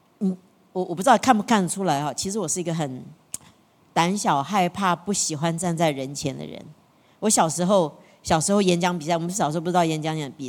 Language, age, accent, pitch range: Chinese, 40-59, American, 175-260 Hz